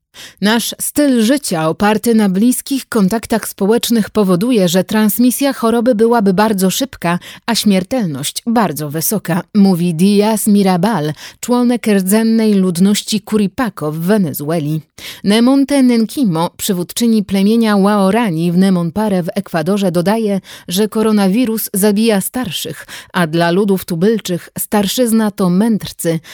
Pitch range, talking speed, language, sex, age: 180-225 Hz, 110 wpm, Polish, female, 30-49